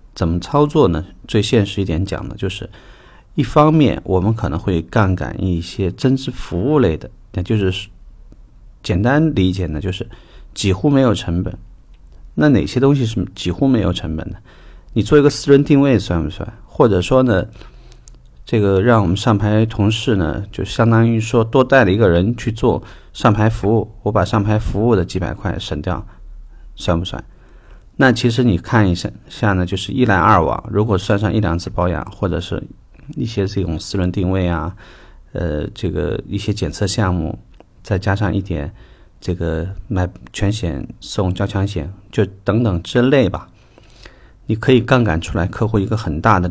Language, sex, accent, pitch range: Chinese, male, native, 90-115 Hz